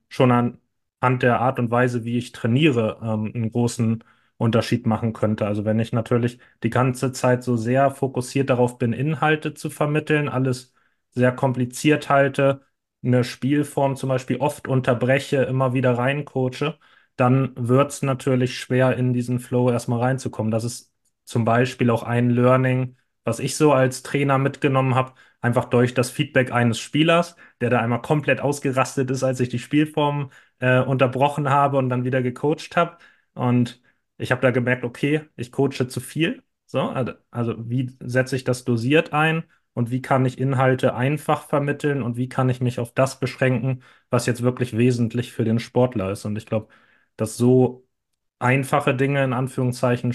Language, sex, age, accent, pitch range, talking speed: German, male, 30-49, German, 120-135 Hz, 170 wpm